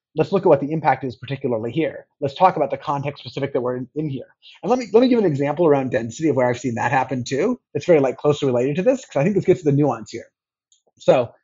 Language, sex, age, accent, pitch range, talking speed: English, male, 30-49, American, 140-190 Hz, 285 wpm